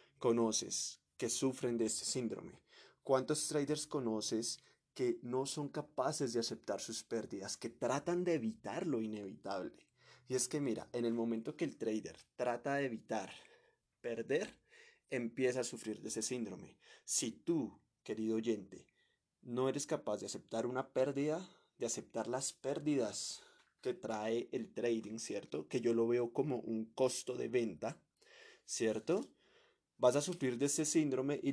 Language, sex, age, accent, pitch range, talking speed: Spanish, male, 20-39, Colombian, 115-140 Hz, 150 wpm